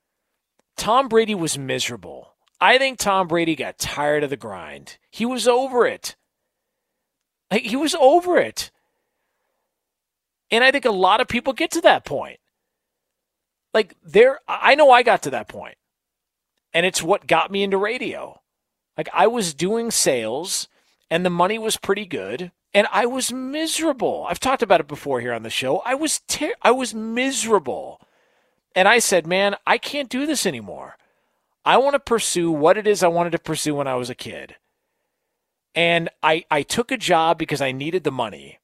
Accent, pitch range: American, 155-240 Hz